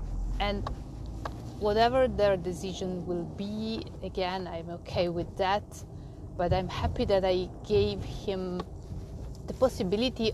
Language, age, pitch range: English, 30-49, 165-195 Hz